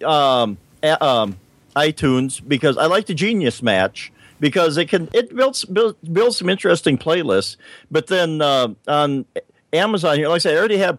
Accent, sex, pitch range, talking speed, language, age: American, male, 125-165 Hz, 180 wpm, English, 50-69